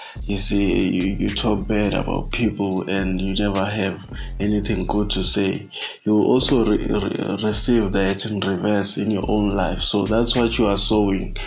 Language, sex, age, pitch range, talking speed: English, male, 20-39, 100-110 Hz, 180 wpm